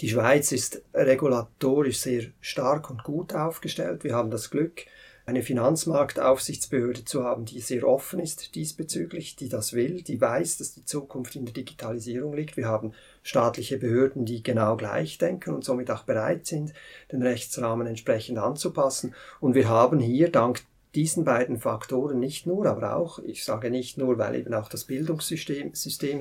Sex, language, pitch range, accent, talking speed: male, German, 120-145 Hz, German, 165 wpm